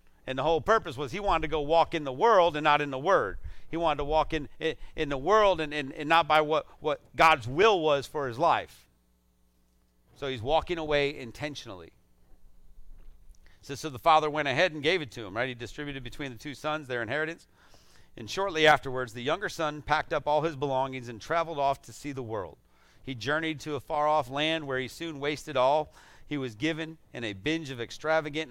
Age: 40-59